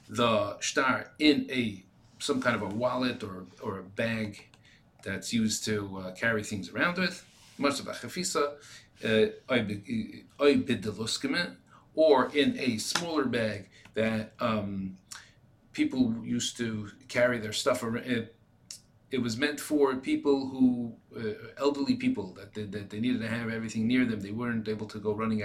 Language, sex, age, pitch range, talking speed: English, male, 40-59, 110-140 Hz, 155 wpm